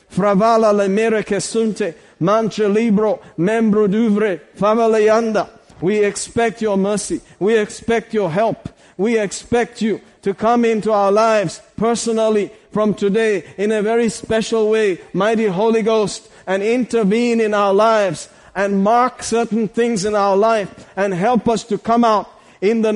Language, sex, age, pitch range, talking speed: English, male, 50-69, 205-230 Hz, 125 wpm